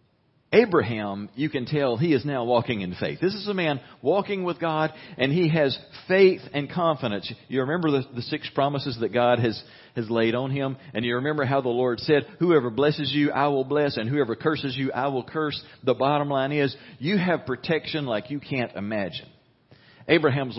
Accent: American